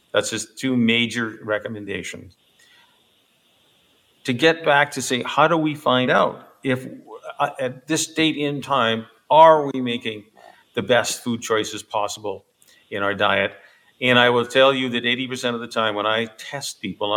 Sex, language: male, English